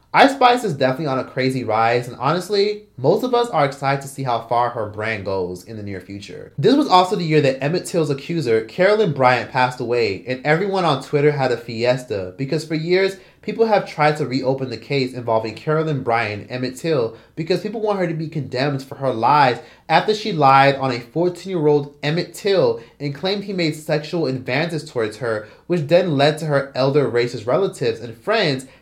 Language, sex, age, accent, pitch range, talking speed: English, male, 30-49, American, 120-160 Hz, 200 wpm